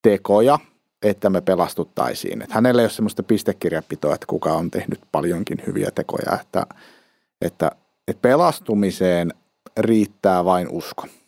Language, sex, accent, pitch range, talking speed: Finnish, male, native, 100-125 Hz, 130 wpm